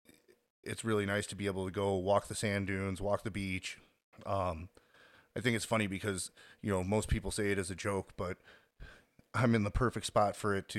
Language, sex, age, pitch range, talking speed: English, male, 30-49, 95-115 Hz, 215 wpm